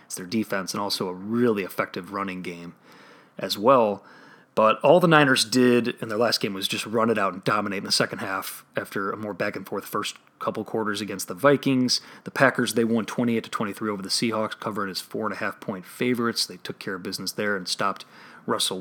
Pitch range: 100-125 Hz